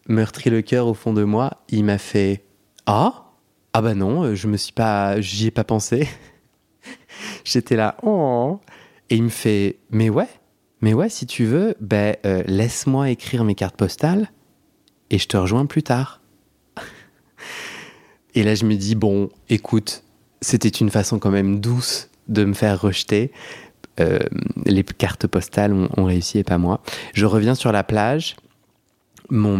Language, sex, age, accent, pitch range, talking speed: French, male, 30-49, French, 95-115 Hz, 165 wpm